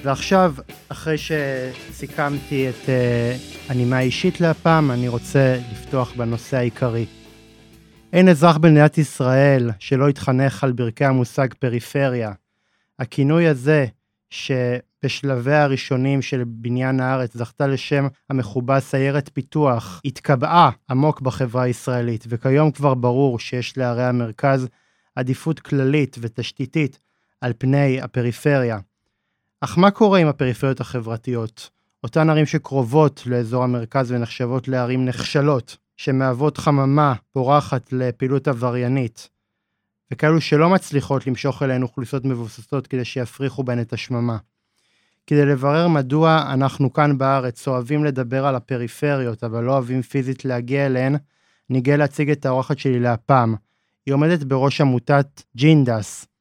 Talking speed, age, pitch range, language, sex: 115 wpm, 30-49, 125-145 Hz, Hebrew, male